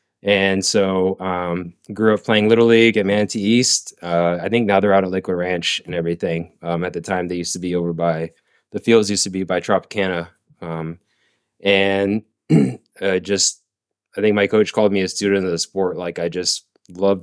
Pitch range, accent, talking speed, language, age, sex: 90-105 Hz, American, 200 wpm, English, 20-39, male